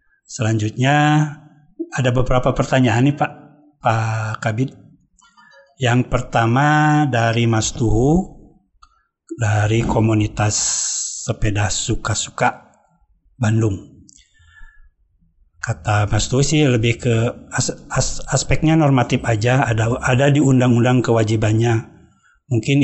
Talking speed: 95 wpm